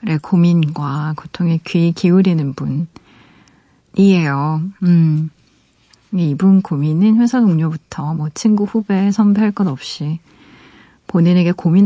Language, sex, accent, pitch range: Korean, female, native, 160-210 Hz